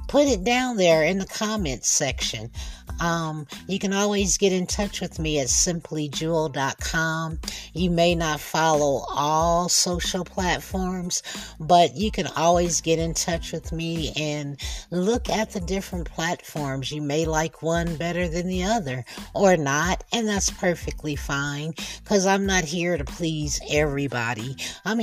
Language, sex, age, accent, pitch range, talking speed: English, female, 50-69, American, 140-180 Hz, 150 wpm